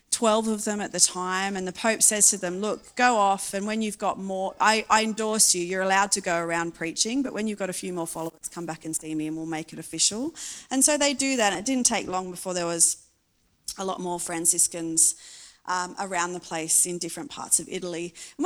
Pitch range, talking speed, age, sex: 180-260 Hz, 240 wpm, 30-49, female